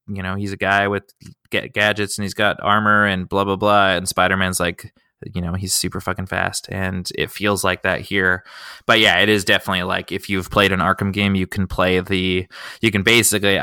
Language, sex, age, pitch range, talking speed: English, male, 20-39, 95-105 Hz, 215 wpm